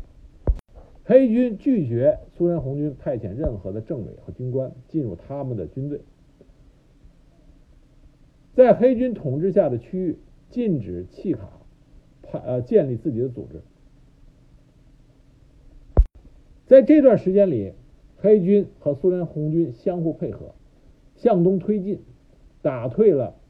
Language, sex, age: Chinese, male, 60-79